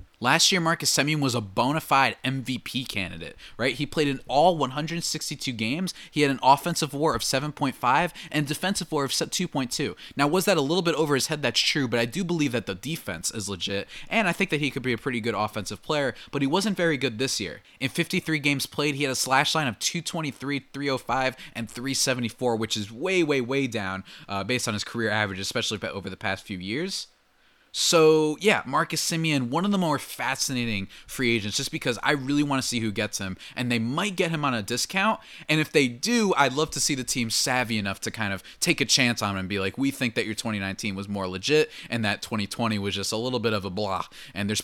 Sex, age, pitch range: male, 20-39, 110-150 Hz